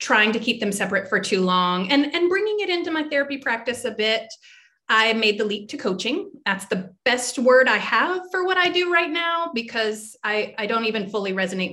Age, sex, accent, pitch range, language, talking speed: 30-49, female, American, 195-265 Hz, English, 220 wpm